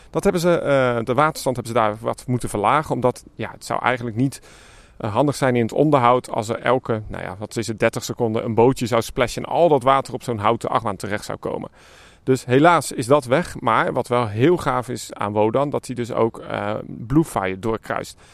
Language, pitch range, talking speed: Dutch, 115-155 Hz, 225 wpm